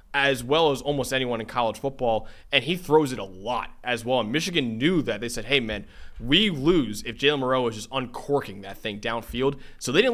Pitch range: 120-155 Hz